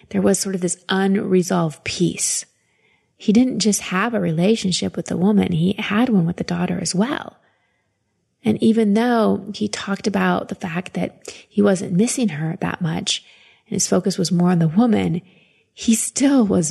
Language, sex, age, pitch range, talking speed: English, female, 30-49, 180-210 Hz, 180 wpm